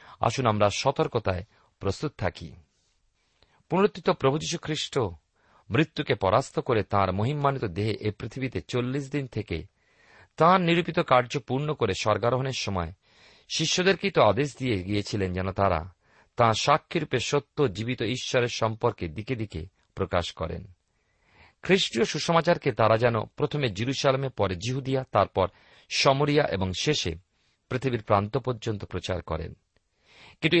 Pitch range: 100-145 Hz